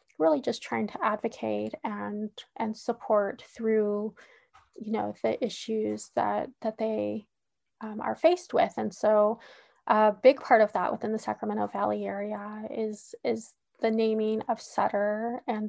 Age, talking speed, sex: 20-39, 150 wpm, female